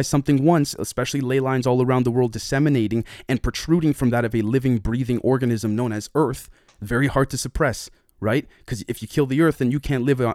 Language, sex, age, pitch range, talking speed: English, male, 30-49, 115-145 Hz, 215 wpm